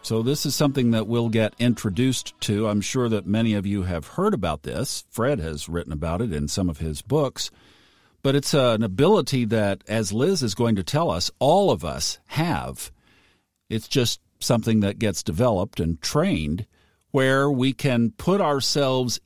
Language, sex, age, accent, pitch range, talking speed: English, male, 50-69, American, 100-135 Hz, 180 wpm